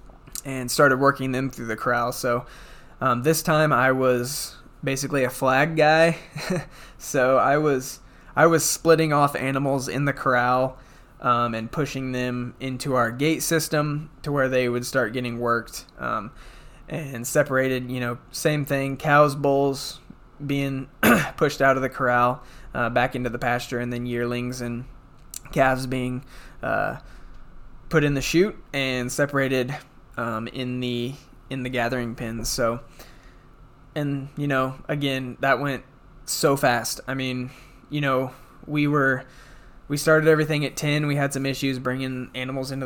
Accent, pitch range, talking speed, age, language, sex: American, 125-145 Hz, 155 wpm, 20-39, English, male